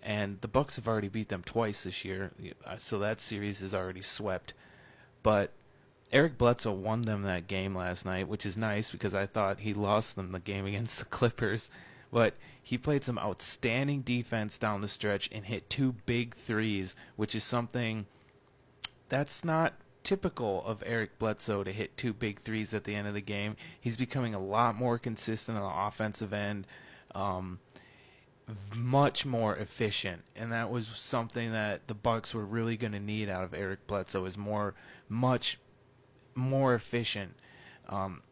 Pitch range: 100-120 Hz